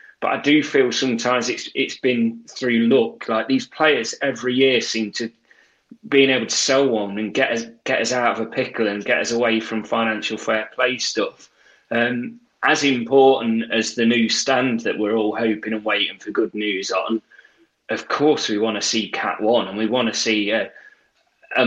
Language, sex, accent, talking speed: English, male, British, 200 wpm